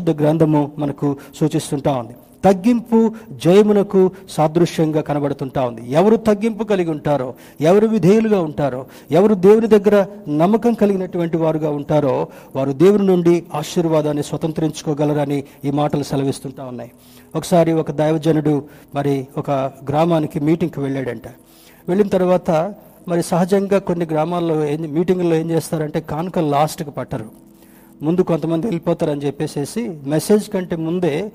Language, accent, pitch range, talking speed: Telugu, native, 140-180 Hz, 115 wpm